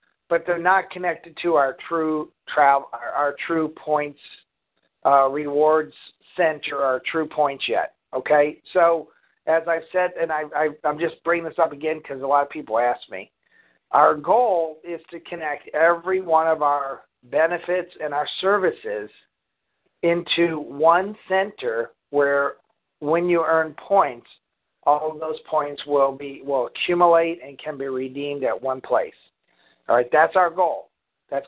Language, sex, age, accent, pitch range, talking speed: English, male, 50-69, American, 145-170 Hz, 155 wpm